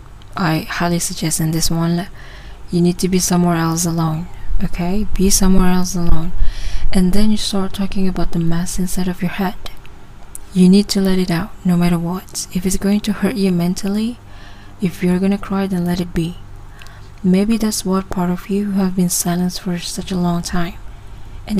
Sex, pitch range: female, 155-190 Hz